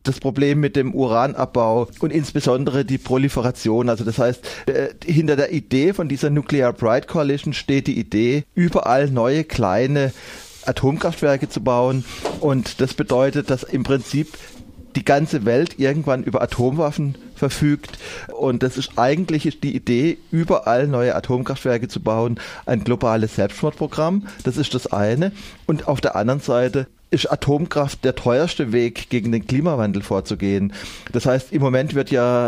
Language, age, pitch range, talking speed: German, 30-49, 120-145 Hz, 150 wpm